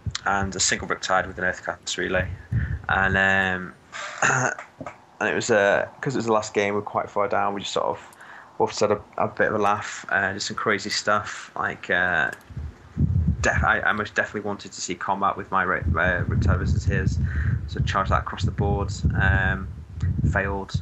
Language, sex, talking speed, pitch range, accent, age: English, male, 195 wpm, 90-100 Hz, British, 20-39